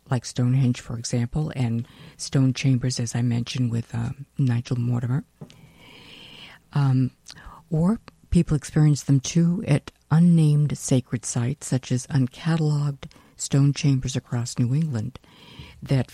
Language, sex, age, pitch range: English, female, 60-79, 125-150 Hz